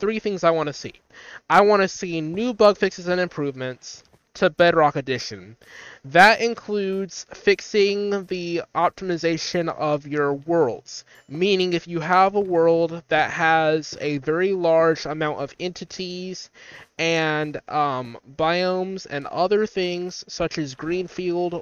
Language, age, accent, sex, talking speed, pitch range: English, 20-39, American, male, 135 wpm, 150-185 Hz